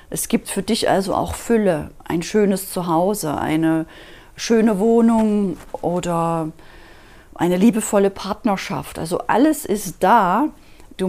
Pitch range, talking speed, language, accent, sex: 180-235 Hz, 120 wpm, German, German, female